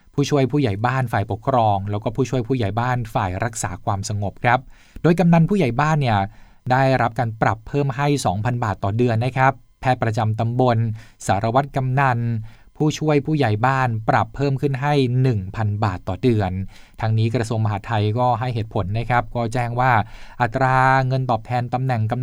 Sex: male